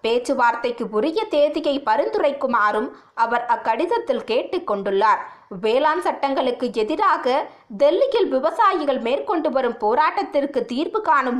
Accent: native